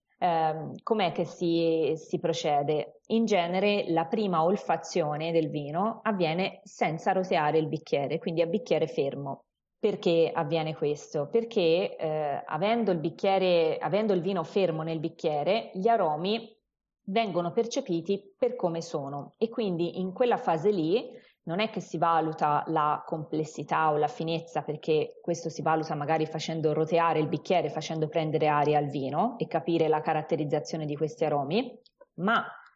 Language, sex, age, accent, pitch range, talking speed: Italian, female, 20-39, native, 155-200 Hz, 145 wpm